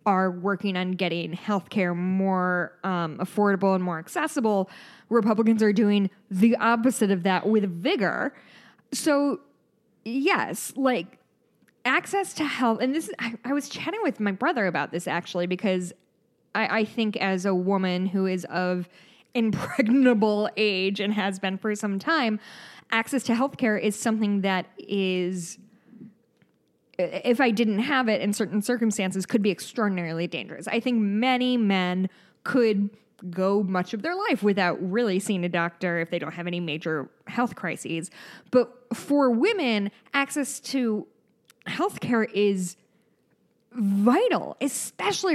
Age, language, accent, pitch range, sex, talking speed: 10-29, English, American, 190-240 Hz, female, 145 wpm